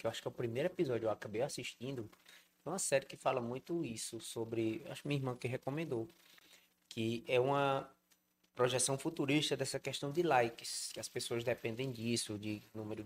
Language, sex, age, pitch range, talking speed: Portuguese, male, 20-39, 110-150 Hz, 195 wpm